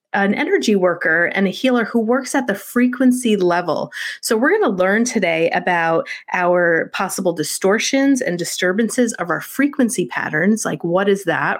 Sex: female